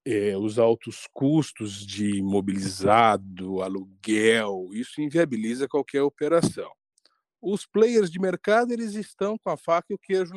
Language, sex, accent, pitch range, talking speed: Portuguese, male, Brazilian, 115-180 Hz, 125 wpm